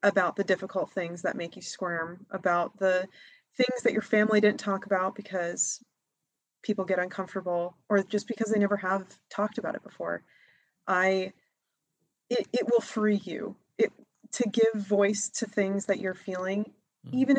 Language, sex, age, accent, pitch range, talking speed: English, female, 20-39, American, 185-225 Hz, 160 wpm